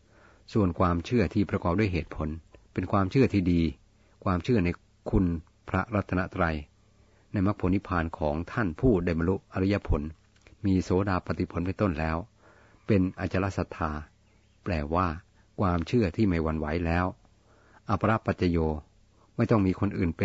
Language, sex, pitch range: Thai, male, 85-105 Hz